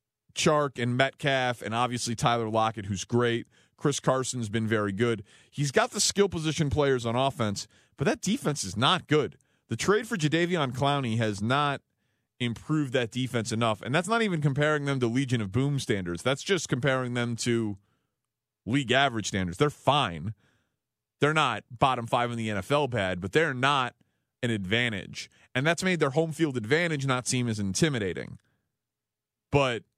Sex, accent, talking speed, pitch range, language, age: male, American, 170 wpm, 110-140 Hz, English, 30-49